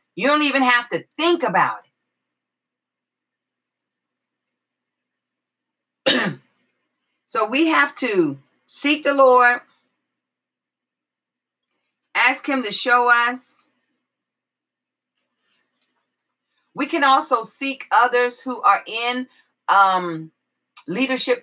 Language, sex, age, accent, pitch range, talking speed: English, female, 40-59, American, 180-255 Hz, 85 wpm